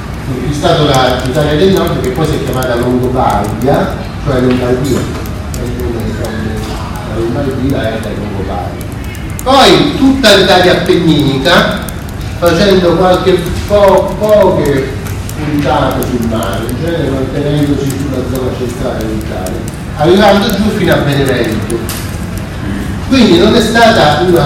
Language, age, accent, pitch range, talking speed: Italian, 40-59, native, 115-175 Hz, 120 wpm